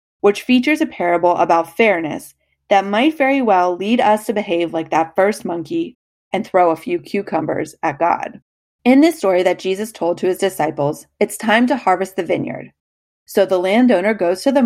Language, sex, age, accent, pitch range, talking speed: English, female, 30-49, American, 175-250 Hz, 190 wpm